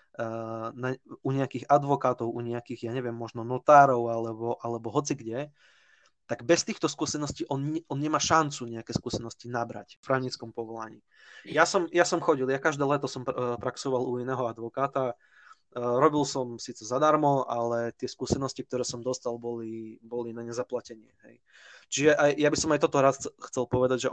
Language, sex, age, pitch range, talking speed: Slovak, male, 20-39, 115-140 Hz, 165 wpm